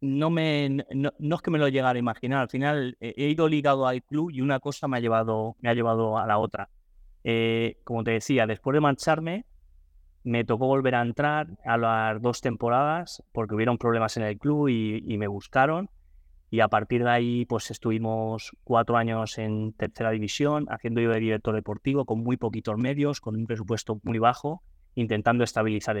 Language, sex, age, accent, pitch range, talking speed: Spanish, male, 20-39, Spanish, 105-130 Hz, 195 wpm